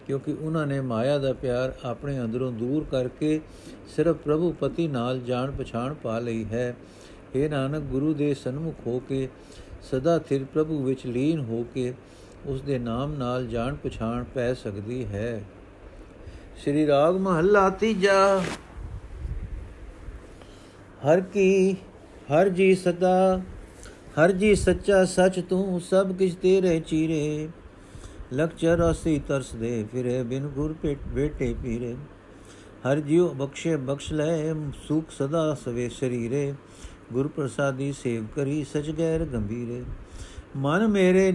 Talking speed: 130 wpm